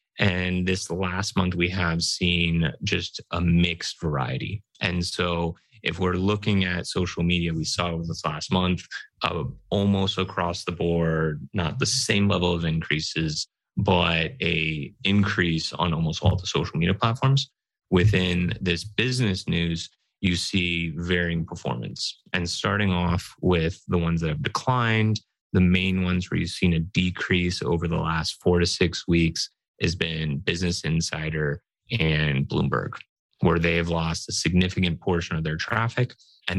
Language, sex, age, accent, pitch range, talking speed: English, male, 30-49, American, 85-95 Hz, 155 wpm